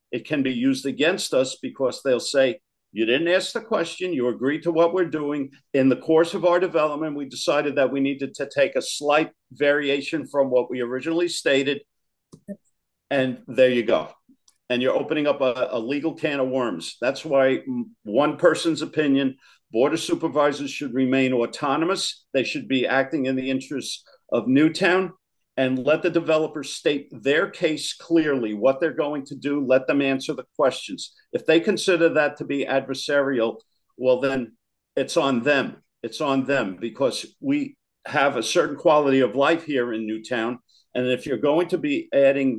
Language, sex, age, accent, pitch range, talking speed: English, male, 50-69, American, 130-160 Hz, 180 wpm